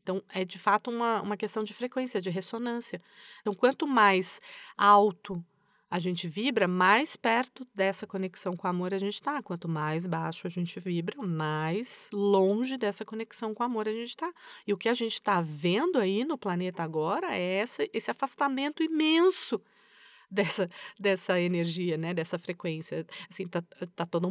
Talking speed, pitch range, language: 165 wpm, 185-245 Hz, Portuguese